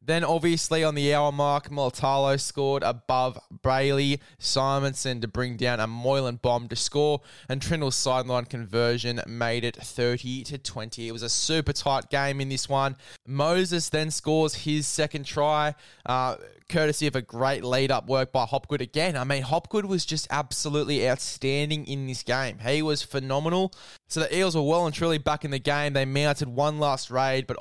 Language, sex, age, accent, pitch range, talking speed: English, male, 10-29, Australian, 125-145 Hz, 180 wpm